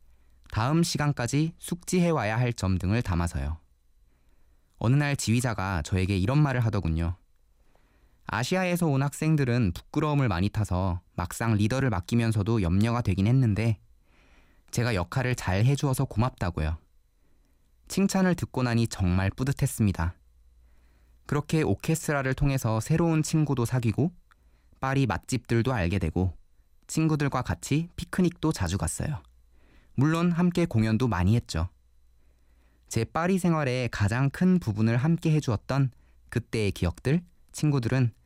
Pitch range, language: 85-140 Hz, Korean